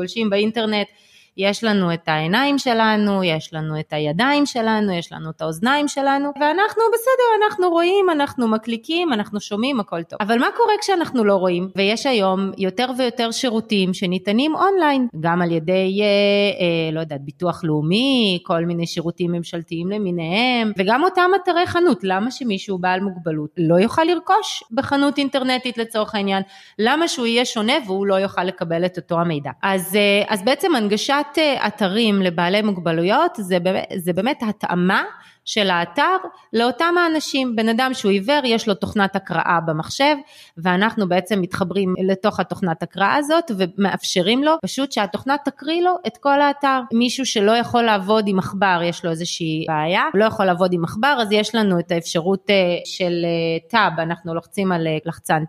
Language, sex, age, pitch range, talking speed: Hebrew, female, 30-49, 180-255 Hz, 150 wpm